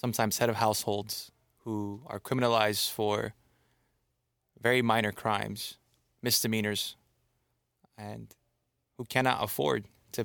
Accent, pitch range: American, 105-120 Hz